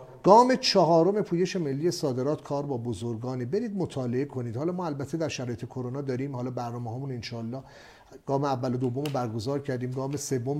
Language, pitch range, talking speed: English, 130-190 Hz, 170 wpm